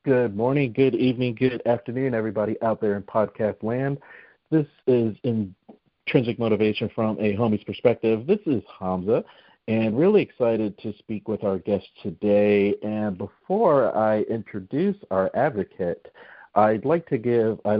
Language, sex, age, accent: English, male, 40-59, American